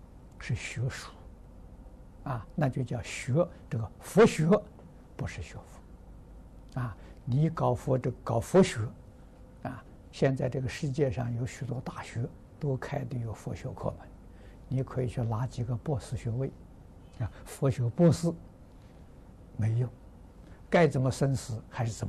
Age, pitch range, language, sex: 60-79, 100-140 Hz, Chinese, male